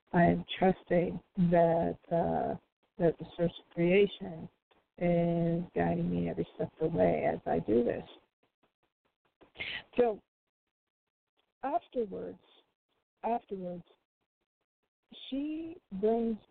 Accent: American